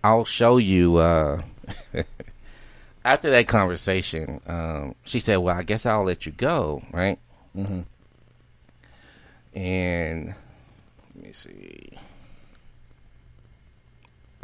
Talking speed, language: 100 wpm, English